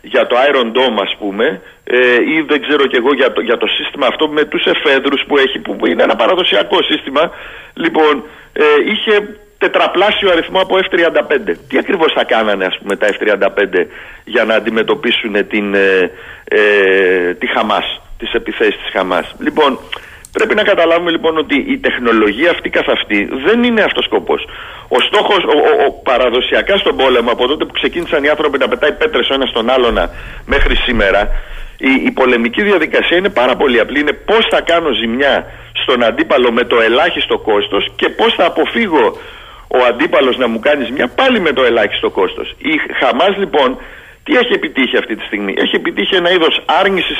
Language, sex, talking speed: Greek, male, 175 wpm